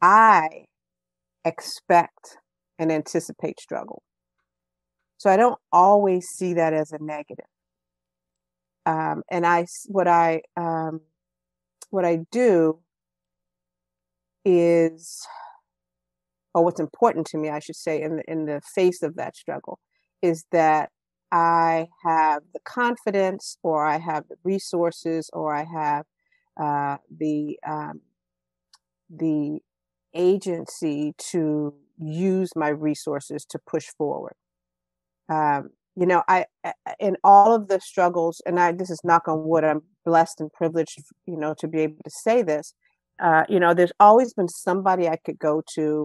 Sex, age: female, 50-69